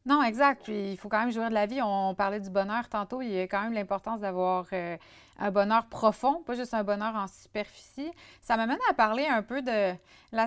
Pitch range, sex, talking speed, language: 195-235 Hz, female, 235 wpm, French